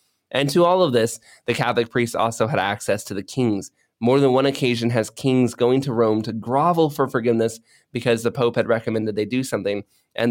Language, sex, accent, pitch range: English, male, American, 115-140 Hz